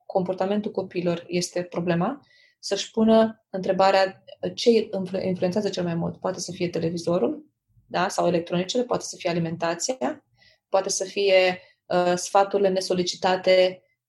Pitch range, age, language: 175-205 Hz, 20-39, Romanian